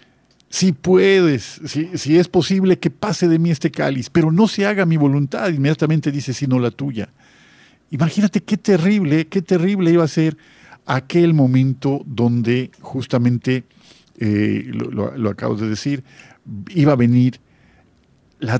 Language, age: Spanish, 50-69